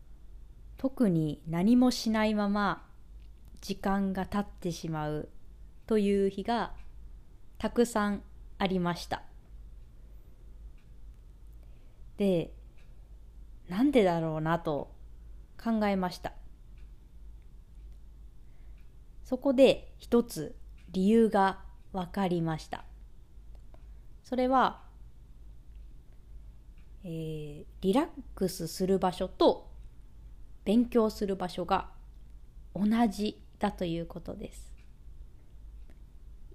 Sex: female